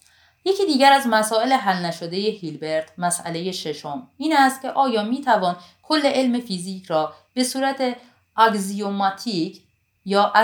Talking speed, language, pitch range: 140 wpm, Persian, 170-245 Hz